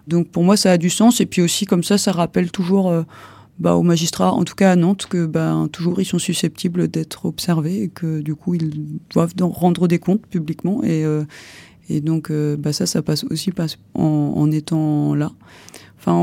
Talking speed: 220 wpm